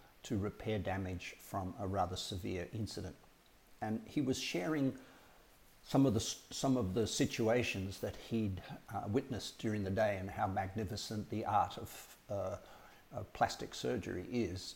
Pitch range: 95-115 Hz